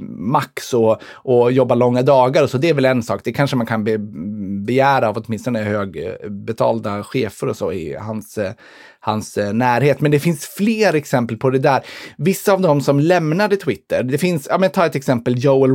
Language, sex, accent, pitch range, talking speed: Swedish, male, native, 110-140 Hz, 190 wpm